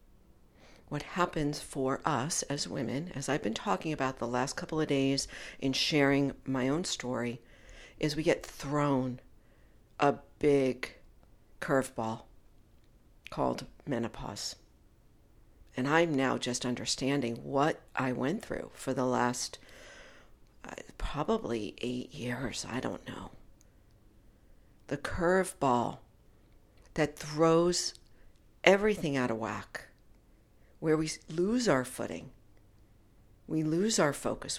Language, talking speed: English, 115 wpm